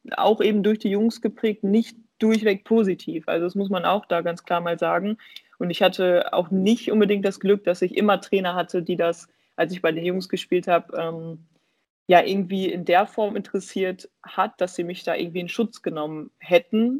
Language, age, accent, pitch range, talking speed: German, 20-39, German, 175-210 Hz, 200 wpm